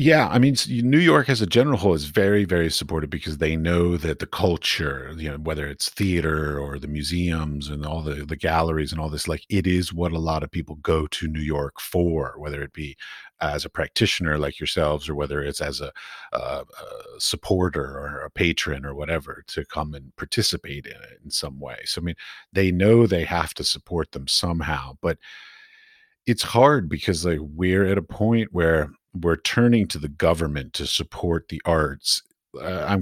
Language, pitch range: English, 75-95 Hz